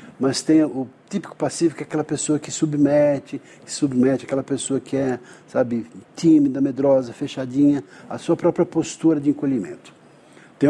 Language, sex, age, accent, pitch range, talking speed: Portuguese, male, 60-79, Brazilian, 125-155 Hz, 155 wpm